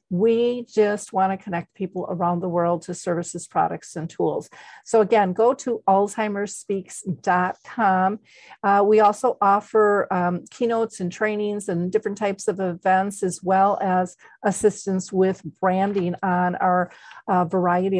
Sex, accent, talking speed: female, American, 135 wpm